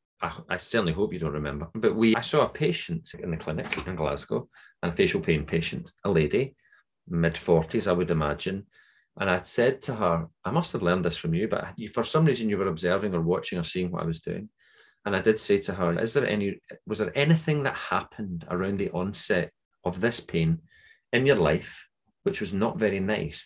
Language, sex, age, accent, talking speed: English, male, 30-49, British, 210 wpm